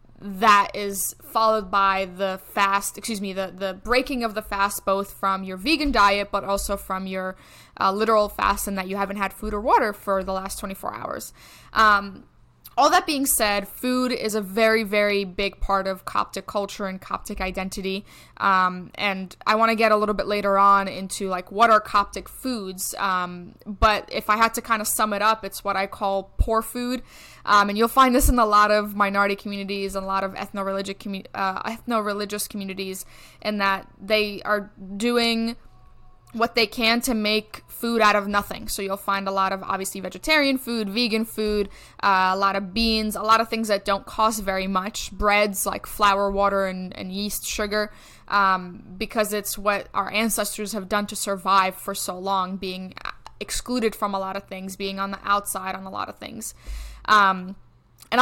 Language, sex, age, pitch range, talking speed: English, female, 20-39, 195-215 Hz, 195 wpm